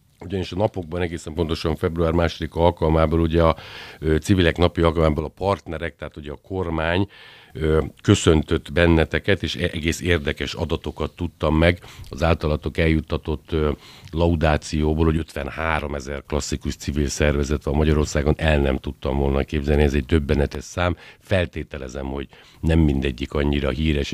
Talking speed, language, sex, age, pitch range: 135 wpm, Hungarian, male, 60-79, 75-85 Hz